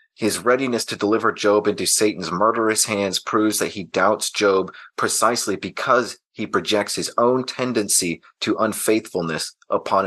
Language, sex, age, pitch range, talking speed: English, male, 30-49, 100-115 Hz, 145 wpm